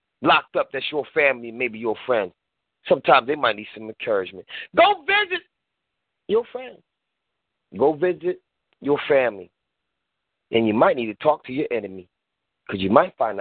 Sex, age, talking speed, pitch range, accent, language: male, 30-49, 160 wpm, 125-205 Hz, American, English